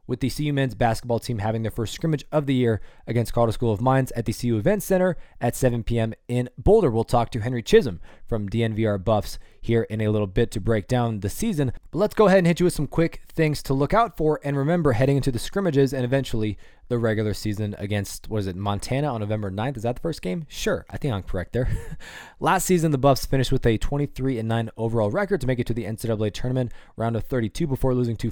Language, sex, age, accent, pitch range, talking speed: English, male, 20-39, American, 110-145 Hz, 240 wpm